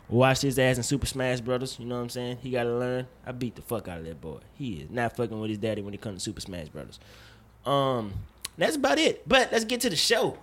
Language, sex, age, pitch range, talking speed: English, male, 20-39, 110-160 Hz, 270 wpm